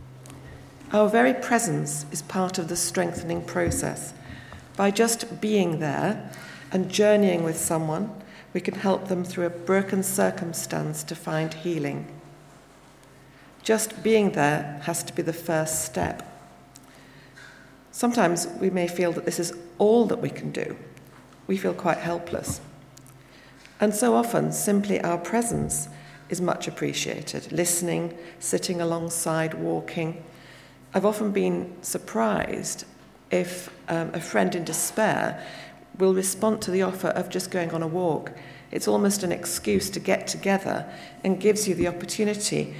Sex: female